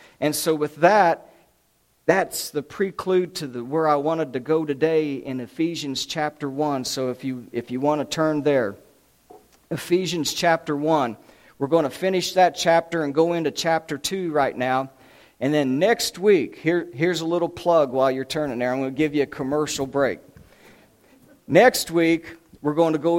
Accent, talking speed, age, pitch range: American, 185 wpm, 50-69, 135-165 Hz